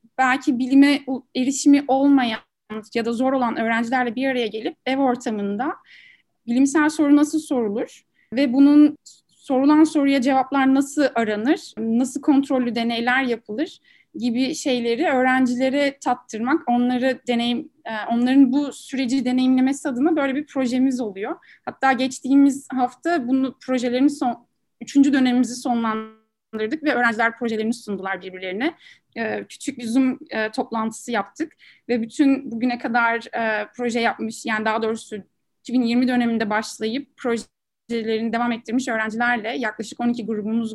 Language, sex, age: Turkish, female, 30-49